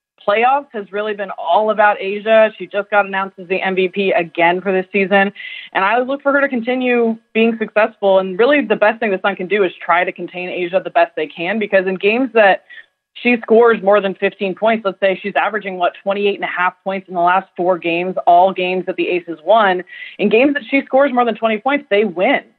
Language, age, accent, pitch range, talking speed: English, 20-39, American, 180-225 Hz, 235 wpm